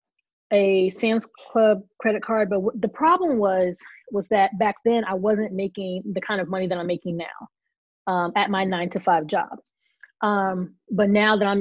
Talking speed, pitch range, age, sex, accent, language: 190 wpm, 185-225 Hz, 20-39, female, American, English